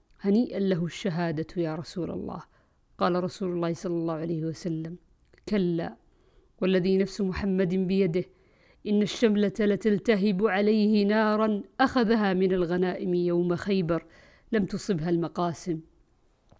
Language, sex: Arabic, female